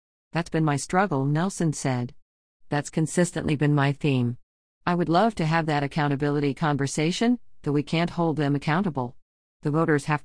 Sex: female